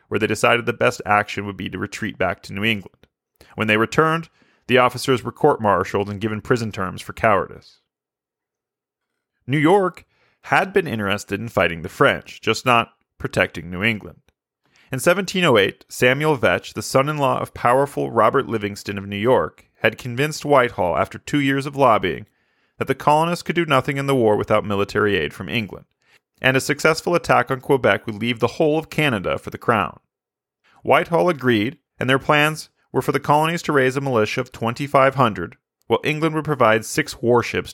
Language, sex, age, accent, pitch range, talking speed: English, male, 30-49, American, 110-145 Hz, 180 wpm